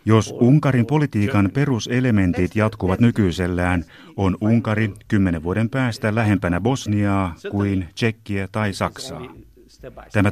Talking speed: 105 wpm